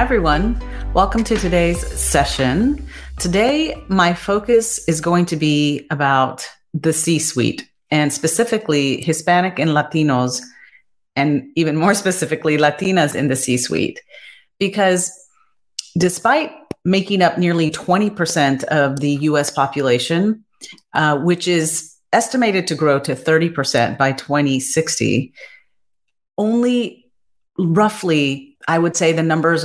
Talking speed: 110 wpm